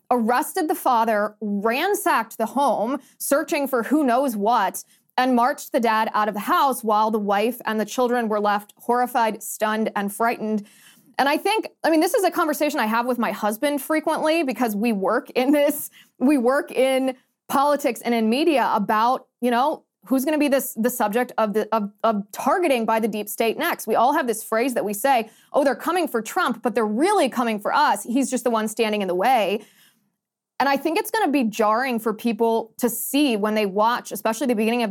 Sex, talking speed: female, 210 wpm